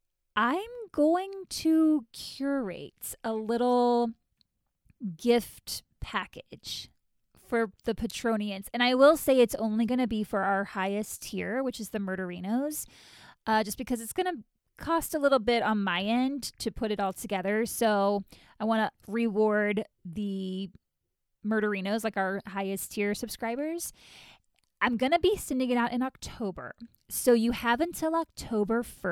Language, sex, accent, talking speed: English, female, American, 150 wpm